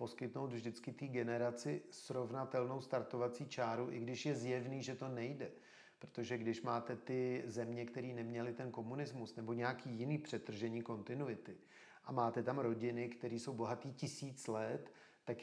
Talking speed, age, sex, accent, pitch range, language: 150 wpm, 40-59, male, native, 120-135 Hz, Czech